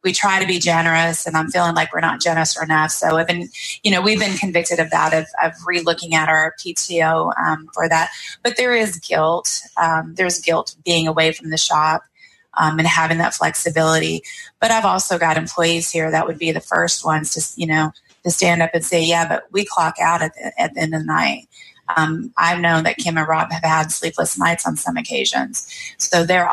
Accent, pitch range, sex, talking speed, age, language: American, 160-185 Hz, female, 220 wpm, 30-49, English